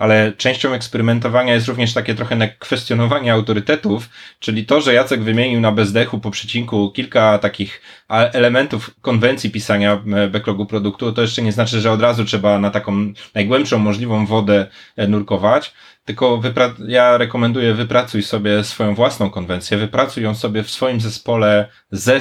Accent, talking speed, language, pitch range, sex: native, 145 wpm, Polish, 105-120 Hz, male